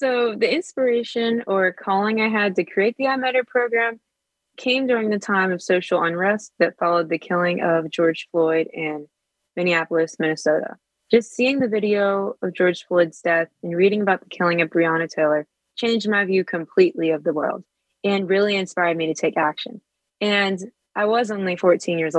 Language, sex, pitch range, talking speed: English, female, 175-220 Hz, 175 wpm